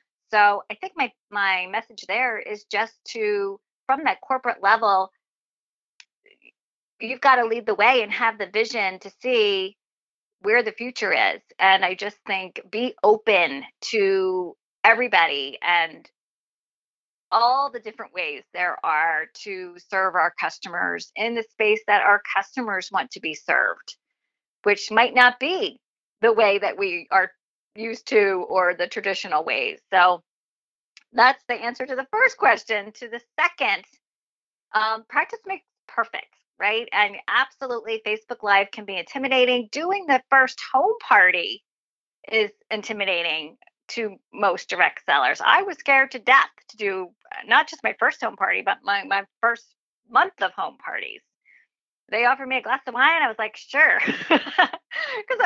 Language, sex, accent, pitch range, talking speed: English, female, American, 200-270 Hz, 155 wpm